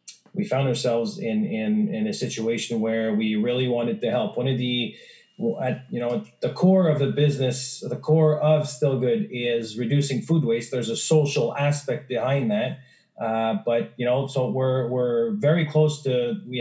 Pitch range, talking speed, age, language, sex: 115-155 Hz, 185 wpm, 30-49, English, male